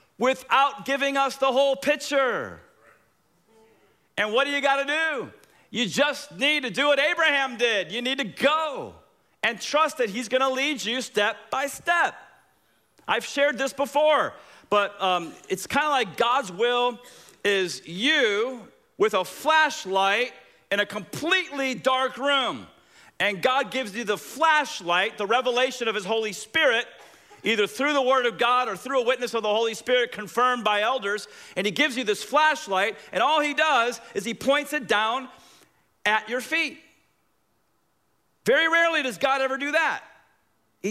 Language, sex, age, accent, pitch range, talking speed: English, male, 40-59, American, 230-295 Hz, 160 wpm